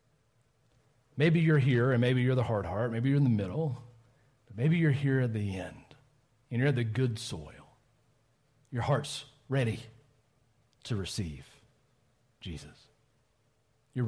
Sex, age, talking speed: male, 40-59, 145 wpm